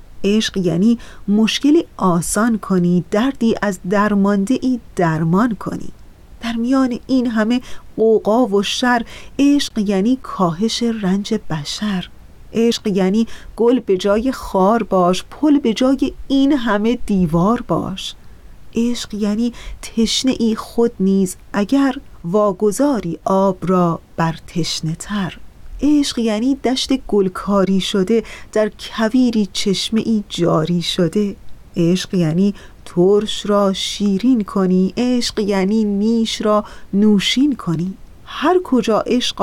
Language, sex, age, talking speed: Persian, female, 30-49, 115 wpm